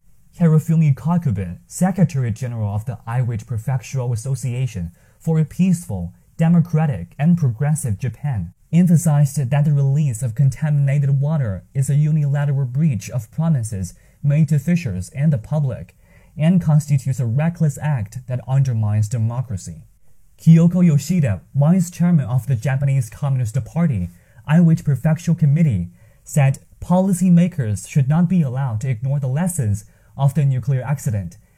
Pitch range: 115-155 Hz